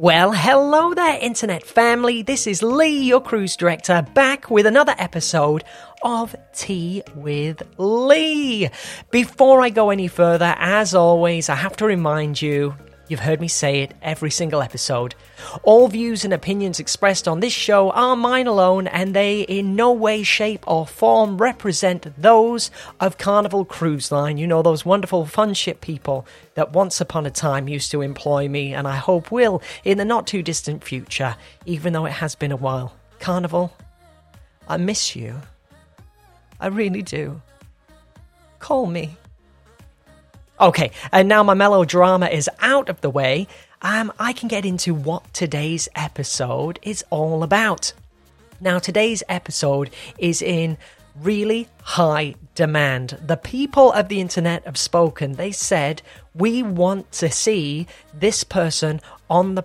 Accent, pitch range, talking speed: British, 145-205 Hz, 155 wpm